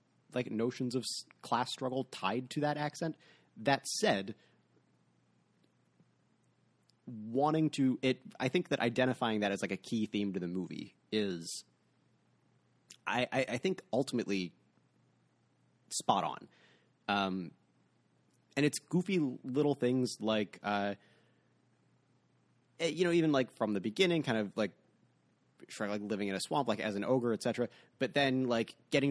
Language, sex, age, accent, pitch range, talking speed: English, male, 30-49, American, 100-130 Hz, 140 wpm